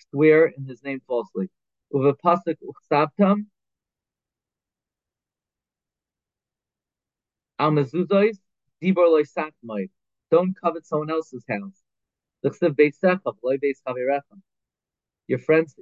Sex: male